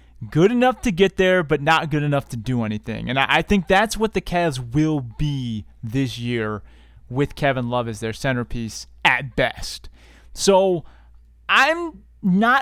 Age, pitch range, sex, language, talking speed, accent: 30-49, 120-180 Hz, male, English, 160 wpm, American